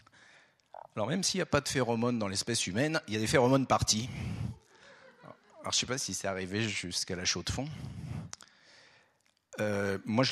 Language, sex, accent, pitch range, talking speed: French, male, French, 95-120 Hz, 190 wpm